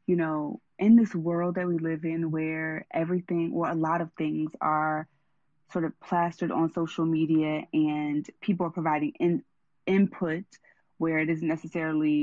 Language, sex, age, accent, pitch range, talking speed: English, female, 20-39, American, 160-190 Hz, 155 wpm